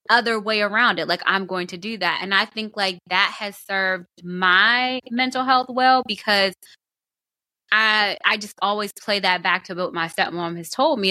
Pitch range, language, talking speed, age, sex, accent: 180-215 Hz, English, 195 wpm, 20-39, female, American